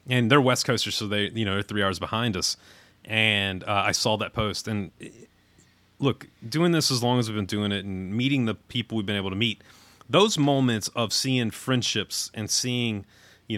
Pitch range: 100-125 Hz